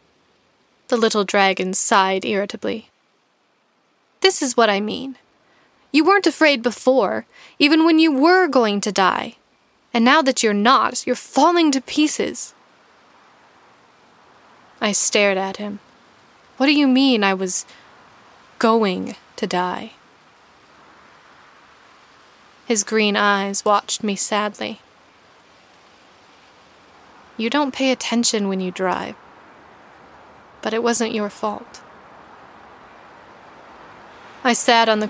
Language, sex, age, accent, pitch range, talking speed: English, female, 10-29, American, 200-240 Hz, 110 wpm